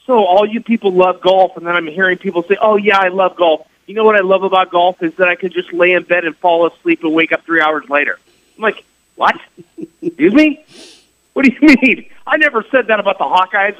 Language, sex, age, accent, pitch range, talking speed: English, male, 40-59, American, 170-265 Hz, 250 wpm